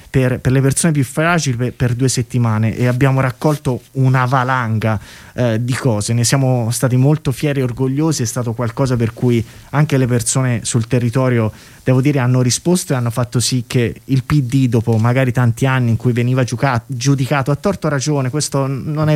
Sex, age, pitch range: male, 20-39, 120-145 Hz